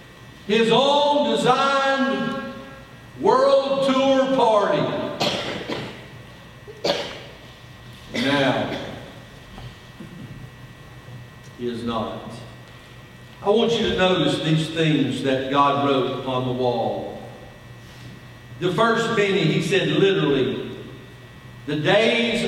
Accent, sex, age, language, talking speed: American, male, 50-69, English, 85 wpm